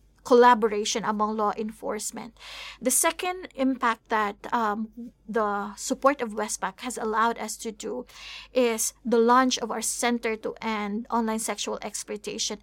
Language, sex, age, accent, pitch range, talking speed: English, female, 20-39, Filipino, 225-255 Hz, 140 wpm